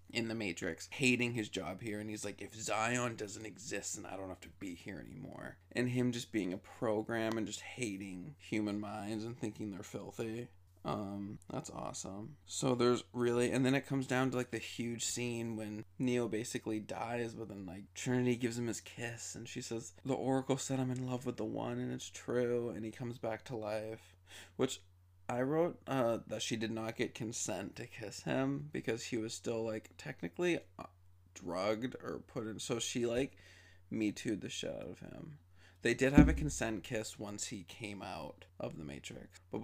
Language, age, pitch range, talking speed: English, 20-39, 100-120 Hz, 200 wpm